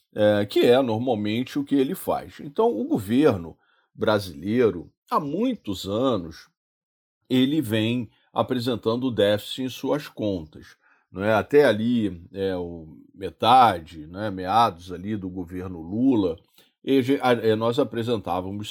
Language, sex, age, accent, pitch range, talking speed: Portuguese, male, 40-59, Brazilian, 100-130 Hz, 95 wpm